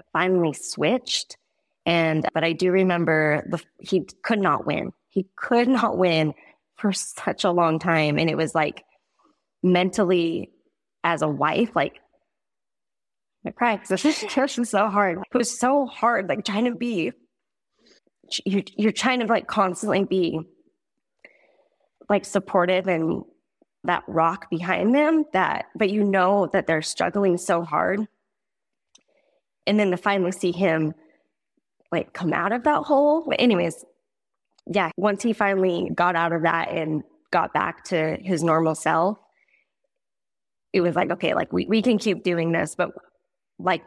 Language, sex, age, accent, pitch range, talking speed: English, female, 20-39, American, 165-205 Hz, 150 wpm